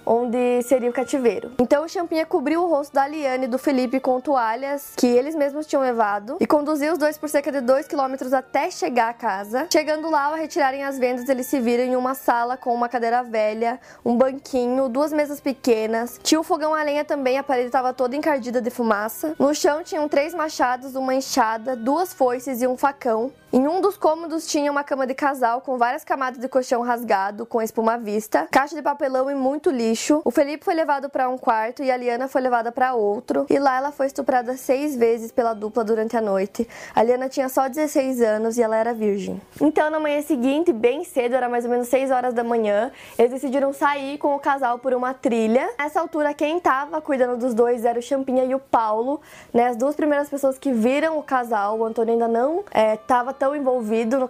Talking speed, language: 215 wpm, Portuguese